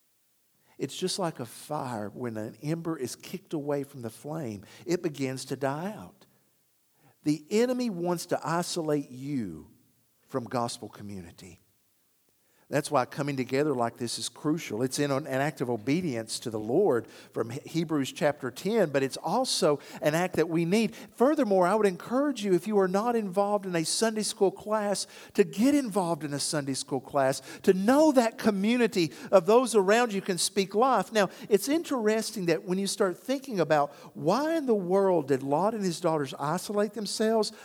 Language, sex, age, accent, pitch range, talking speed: English, male, 50-69, American, 145-215 Hz, 175 wpm